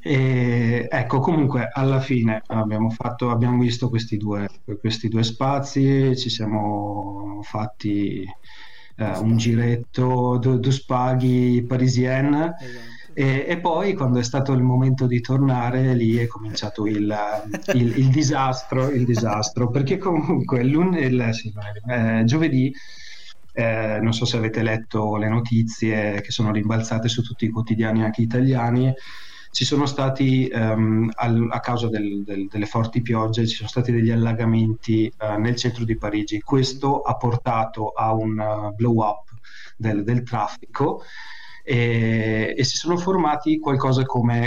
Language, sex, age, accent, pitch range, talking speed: Italian, male, 30-49, native, 110-130 Hz, 145 wpm